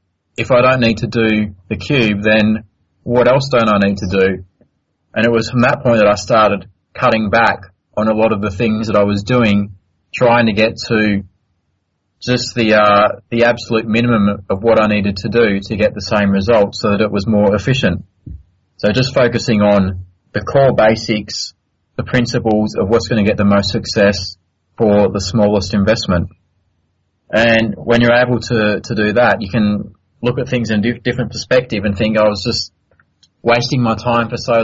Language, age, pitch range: English, 30-49, 100-115 Hz